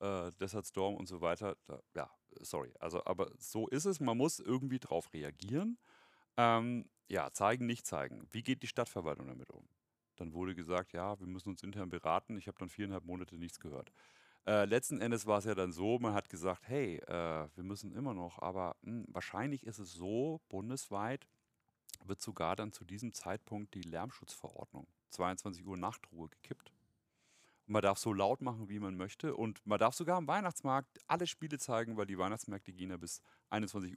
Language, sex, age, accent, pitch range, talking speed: German, male, 40-59, German, 90-115 Hz, 185 wpm